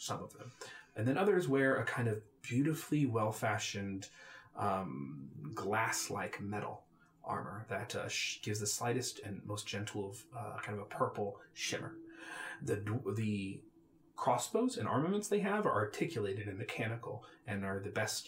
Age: 30-49